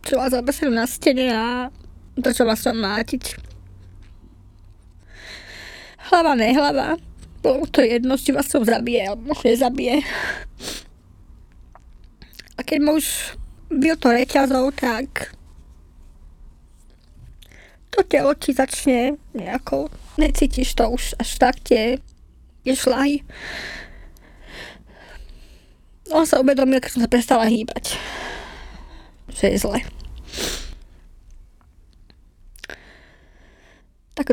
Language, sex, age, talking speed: Slovak, female, 20-39, 95 wpm